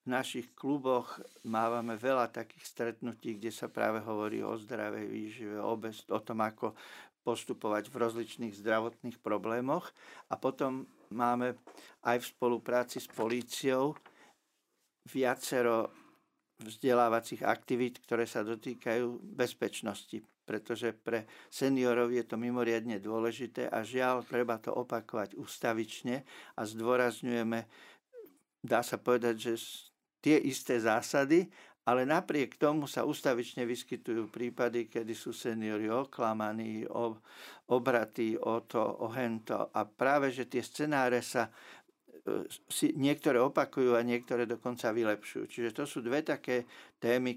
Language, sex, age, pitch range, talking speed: Slovak, male, 50-69, 115-125 Hz, 120 wpm